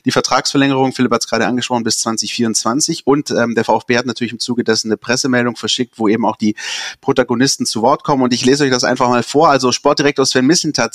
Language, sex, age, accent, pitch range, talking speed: German, male, 30-49, German, 110-135 Hz, 225 wpm